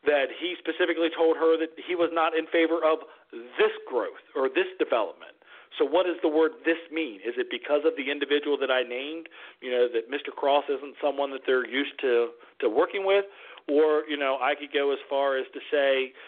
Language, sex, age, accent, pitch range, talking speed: English, male, 40-59, American, 135-165 Hz, 215 wpm